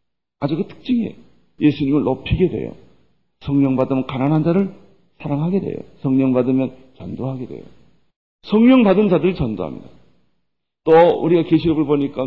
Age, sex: 40-59, male